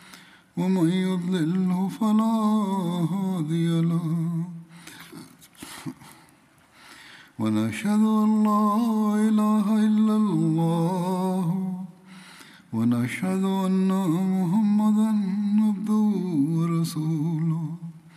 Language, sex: Bulgarian, male